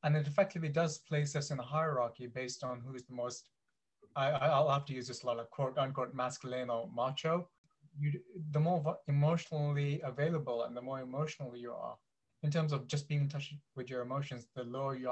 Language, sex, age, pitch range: English, male, 20-39, 130-155 Hz